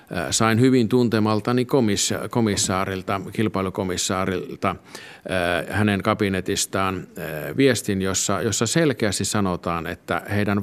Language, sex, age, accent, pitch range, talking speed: Finnish, male, 50-69, native, 95-120 Hz, 80 wpm